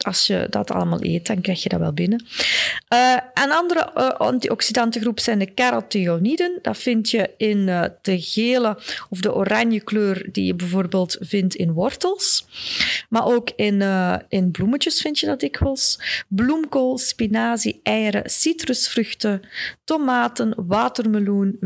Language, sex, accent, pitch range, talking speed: Dutch, female, Dutch, 185-240 Hz, 145 wpm